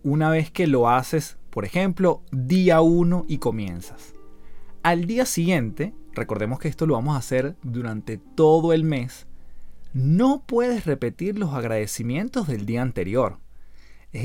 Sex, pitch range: male, 130-180 Hz